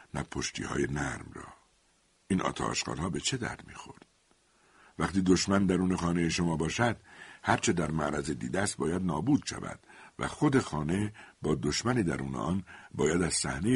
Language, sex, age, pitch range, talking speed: Persian, male, 60-79, 75-95 Hz, 150 wpm